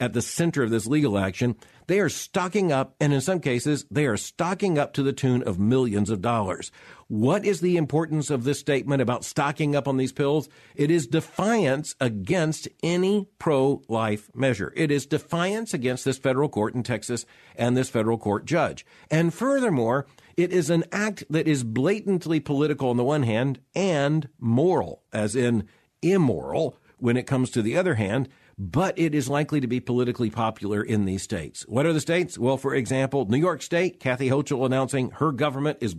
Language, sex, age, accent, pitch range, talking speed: English, male, 50-69, American, 125-165 Hz, 190 wpm